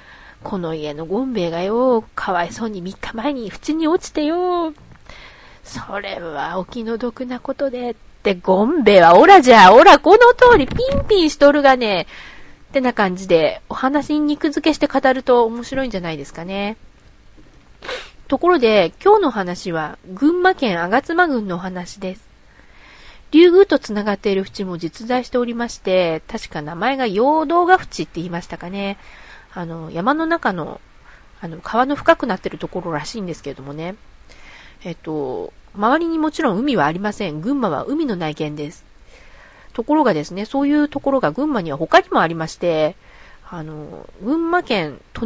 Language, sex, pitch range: Japanese, female, 180-290 Hz